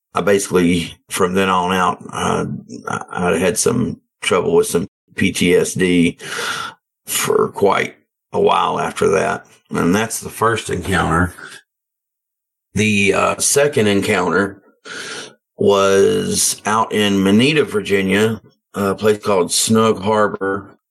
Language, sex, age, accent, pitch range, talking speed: English, male, 50-69, American, 95-105 Hz, 110 wpm